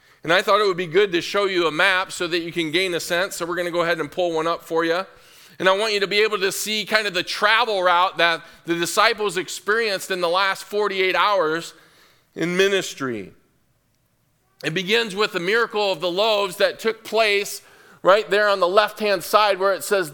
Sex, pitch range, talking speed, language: male, 160-200 Hz, 225 wpm, English